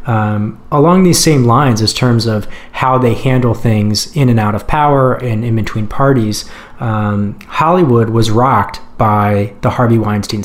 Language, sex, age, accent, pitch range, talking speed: English, male, 30-49, American, 110-135 Hz, 165 wpm